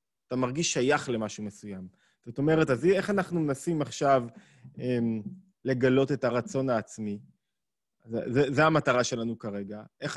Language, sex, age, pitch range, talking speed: Hebrew, male, 20-39, 120-160 Hz, 130 wpm